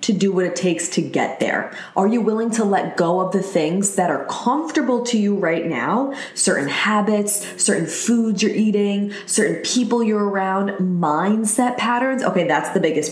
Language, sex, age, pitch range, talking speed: English, female, 20-39, 180-220 Hz, 185 wpm